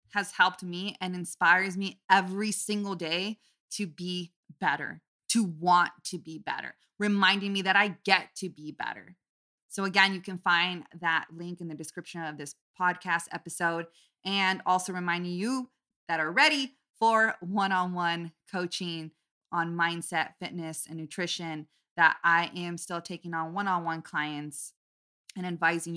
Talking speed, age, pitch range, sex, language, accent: 150 wpm, 20-39, 160-190 Hz, female, English, American